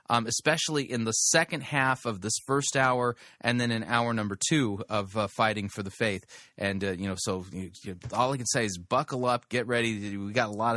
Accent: American